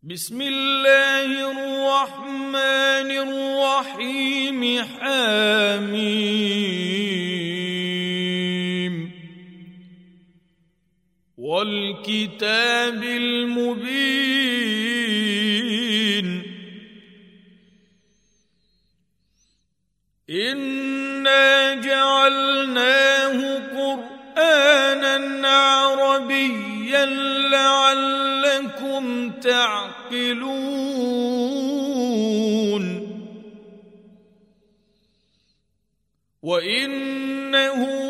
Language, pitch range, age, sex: Arabic, 205-270 Hz, 40-59, male